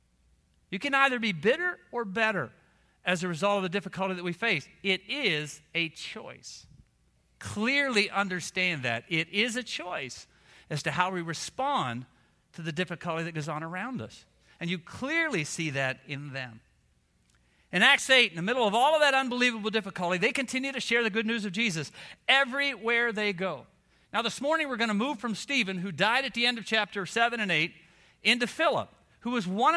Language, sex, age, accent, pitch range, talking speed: English, male, 50-69, American, 160-235 Hz, 190 wpm